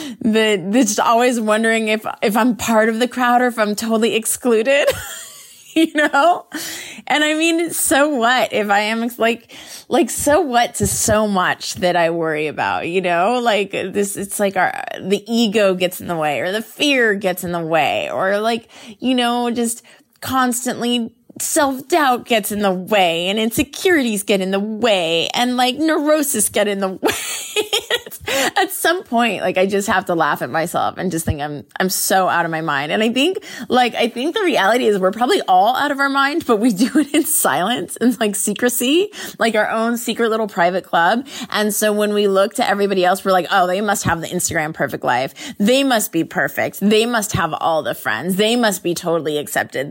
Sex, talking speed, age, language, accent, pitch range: female, 200 wpm, 20-39, English, American, 185-250 Hz